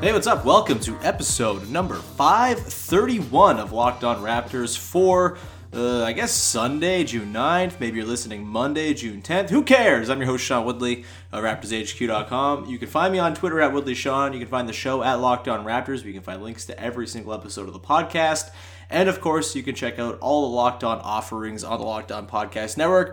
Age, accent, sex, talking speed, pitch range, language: 30-49, American, male, 210 wpm, 105-145 Hz, English